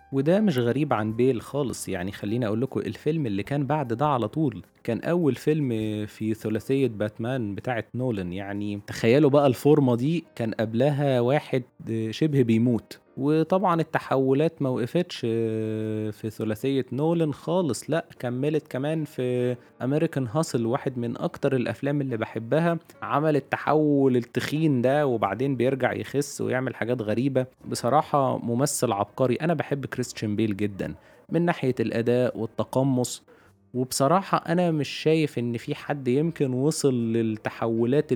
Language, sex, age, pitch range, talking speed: Arabic, male, 20-39, 120-155 Hz, 135 wpm